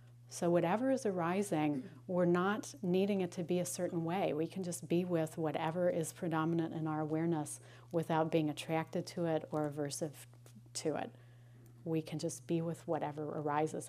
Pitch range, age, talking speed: 145-180 Hz, 40-59, 175 wpm